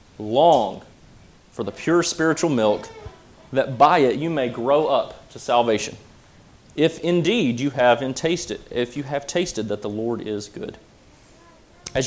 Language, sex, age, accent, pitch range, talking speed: English, male, 30-49, American, 110-155 Hz, 150 wpm